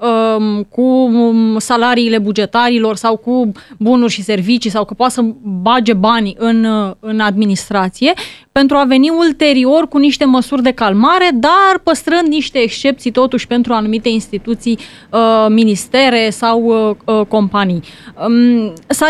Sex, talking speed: female, 120 wpm